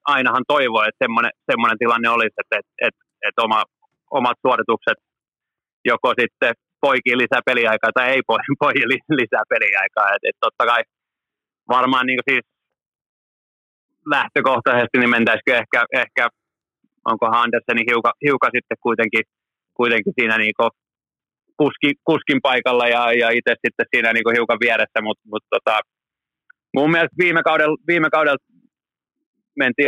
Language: Finnish